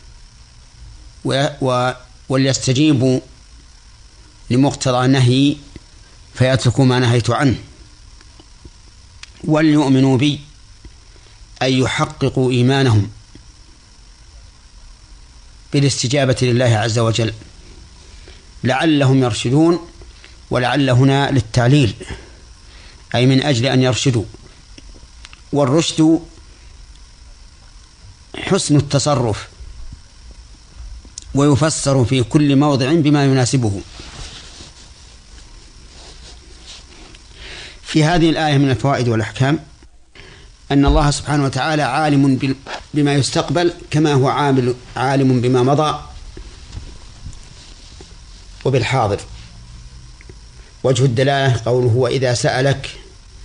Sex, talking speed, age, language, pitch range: male, 65 wpm, 50-69, Arabic, 90-140 Hz